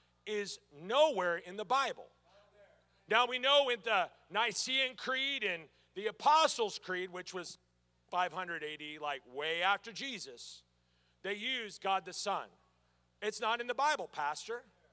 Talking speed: 140 wpm